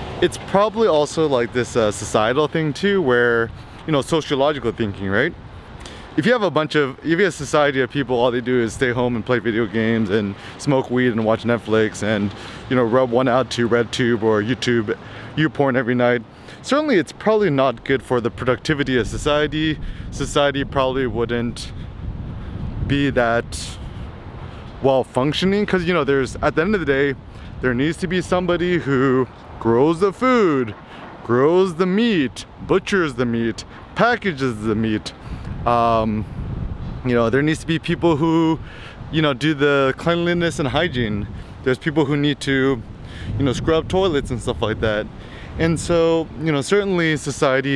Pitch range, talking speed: 115-155 Hz, 175 wpm